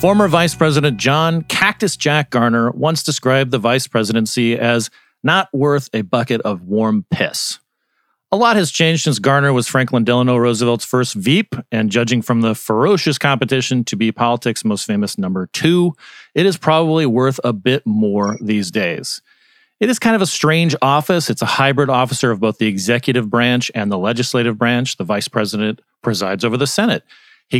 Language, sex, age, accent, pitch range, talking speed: English, male, 40-59, American, 120-160 Hz, 180 wpm